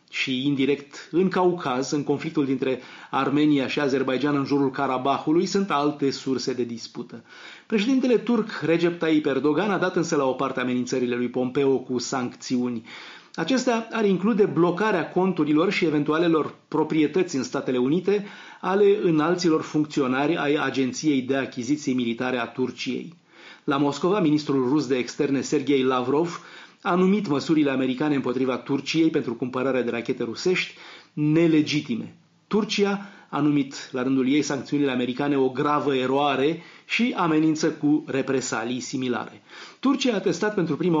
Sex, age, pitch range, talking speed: male, 30-49, 135-170 Hz, 140 wpm